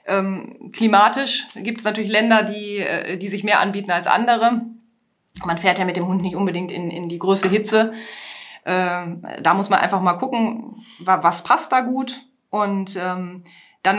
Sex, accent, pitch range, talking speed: female, German, 190-235 Hz, 170 wpm